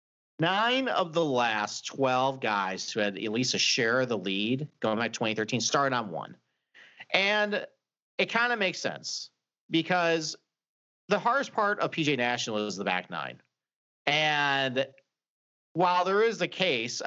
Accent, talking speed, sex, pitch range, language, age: American, 160 wpm, male, 105-165 Hz, English, 40-59